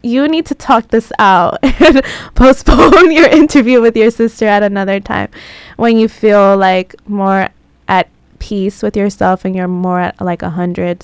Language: English